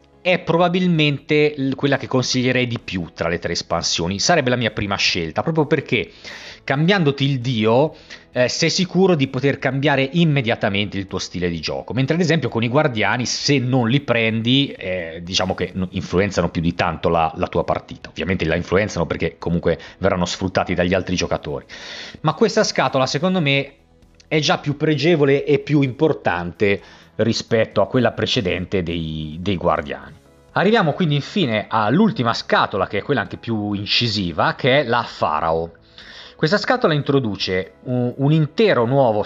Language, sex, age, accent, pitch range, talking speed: Italian, male, 30-49, native, 90-145 Hz, 160 wpm